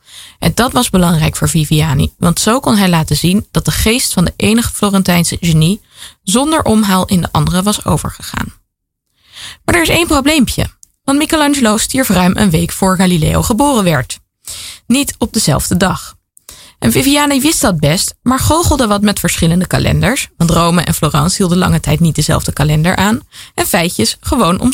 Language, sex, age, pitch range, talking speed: Dutch, female, 20-39, 165-225 Hz, 175 wpm